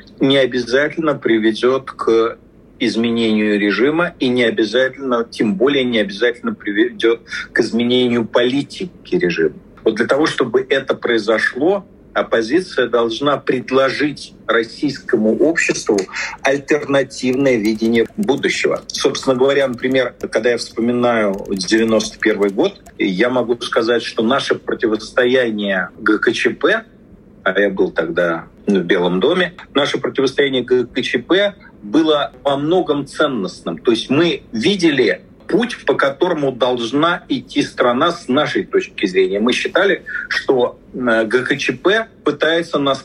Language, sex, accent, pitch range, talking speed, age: Russian, male, native, 120-155 Hz, 115 wpm, 40-59